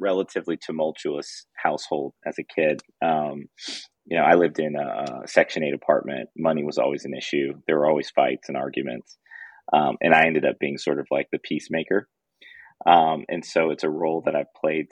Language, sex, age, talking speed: English, male, 30-49, 195 wpm